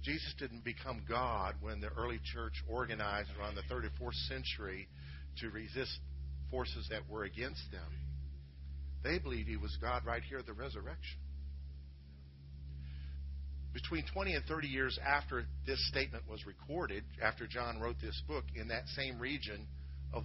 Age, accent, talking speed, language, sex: 50-69, American, 150 wpm, English, male